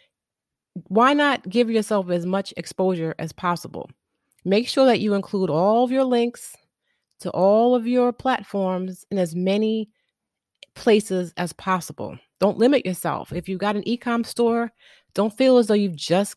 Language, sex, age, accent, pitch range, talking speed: English, female, 30-49, American, 180-230 Hz, 165 wpm